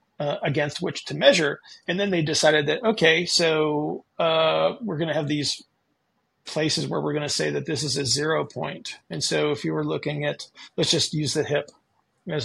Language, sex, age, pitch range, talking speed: English, male, 40-59, 145-165 Hz, 205 wpm